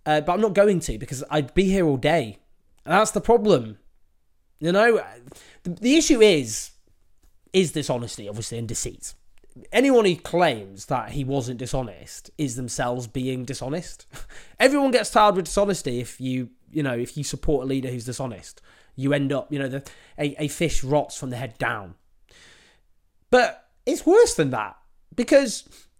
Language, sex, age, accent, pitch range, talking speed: English, male, 20-39, British, 125-180 Hz, 165 wpm